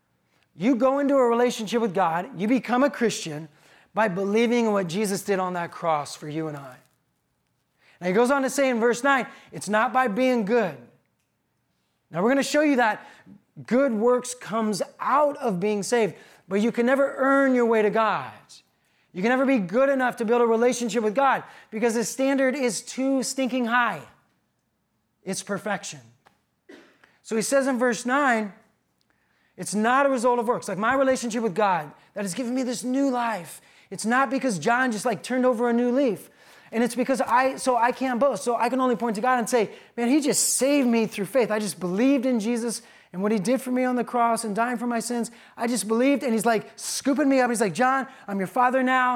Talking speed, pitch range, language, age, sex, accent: 215 wpm, 215-255 Hz, English, 30-49, male, American